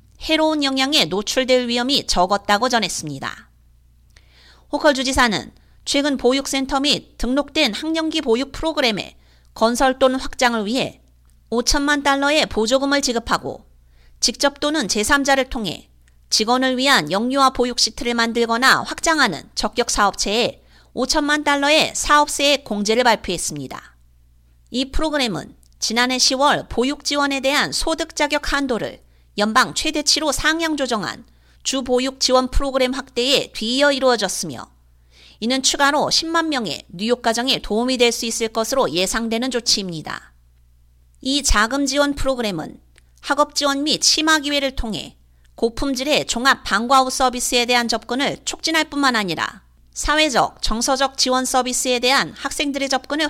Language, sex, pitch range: Korean, female, 210-280 Hz